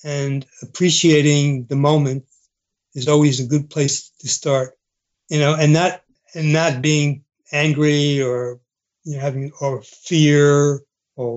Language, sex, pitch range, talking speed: English, male, 135-155 Hz, 135 wpm